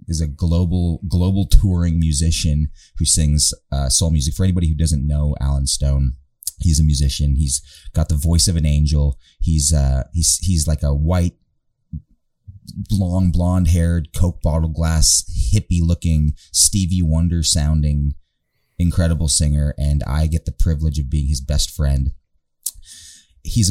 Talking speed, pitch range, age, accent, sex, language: 150 wpm, 75-90 Hz, 30-49, American, male, English